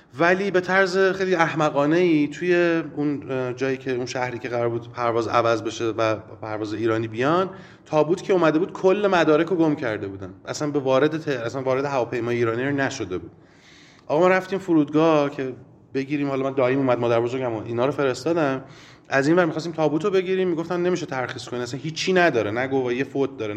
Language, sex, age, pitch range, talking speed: Persian, male, 30-49, 115-155 Hz, 190 wpm